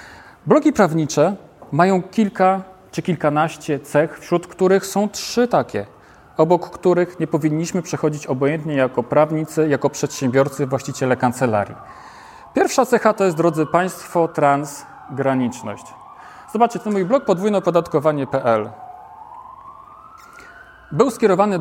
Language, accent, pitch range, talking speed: Polish, native, 135-180 Hz, 105 wpm